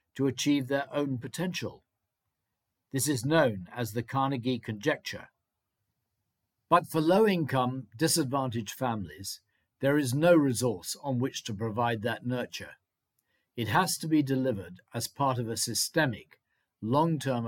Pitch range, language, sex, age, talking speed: 115-140 Hz, English, male, 50-69, 130 wpm